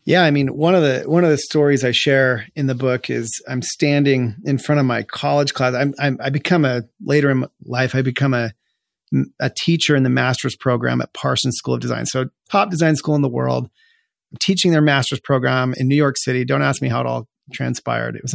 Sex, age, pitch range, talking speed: male, 40-59, 125-155 Hz, 235 wpm